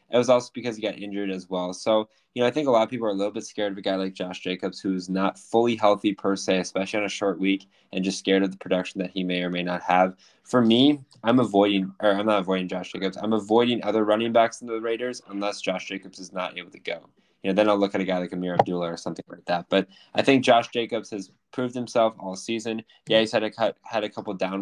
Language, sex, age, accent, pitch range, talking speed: English, male, 10-29, American, 95-115 Hz, 280 wpm